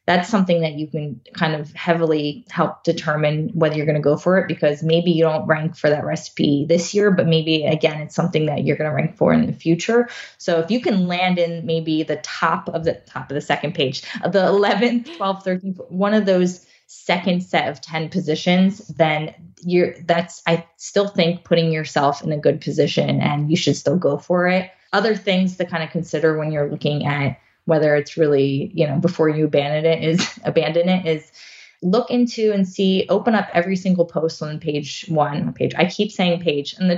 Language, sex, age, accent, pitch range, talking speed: English, female, 20-39, American, 155-185 Hz, 210 wpm